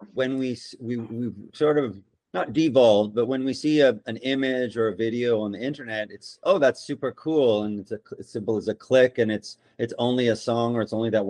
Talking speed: 225 wpm